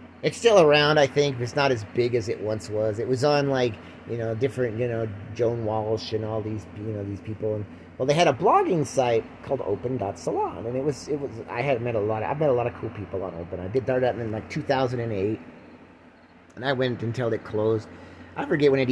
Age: 30-49